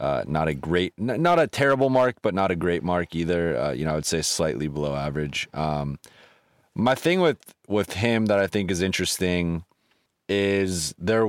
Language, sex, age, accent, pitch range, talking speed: English, male, 20-39, American, 85-100 Hz, 190 wpm